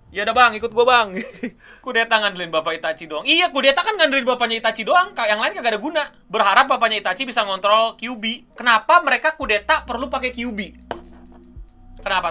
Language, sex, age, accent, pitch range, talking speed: Indonesian, male, 20-39, native, 205-295 Hz, 175 wpm